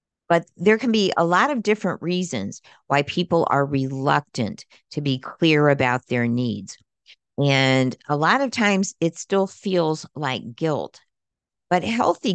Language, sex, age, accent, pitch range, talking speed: English, female, 50-69, American, 130-170 Hz, 150 wpm